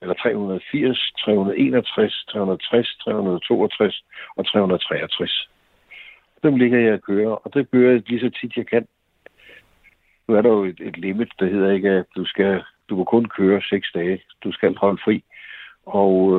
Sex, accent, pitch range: male, native, 95-115 Hz